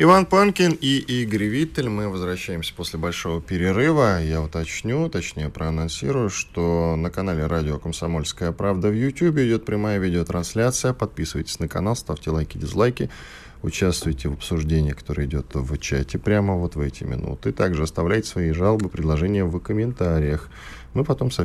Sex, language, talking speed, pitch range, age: male, Russian, 150 wpm, 80-110 Hz, 10-29